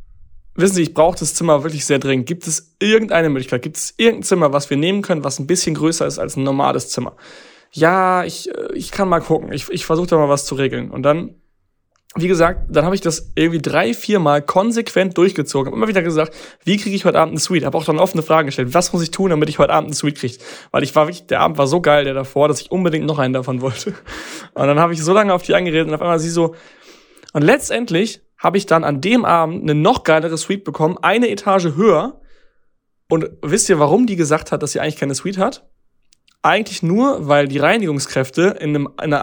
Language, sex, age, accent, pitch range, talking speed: German, male, 20-39, German, 145-180 Hz, 240 wpm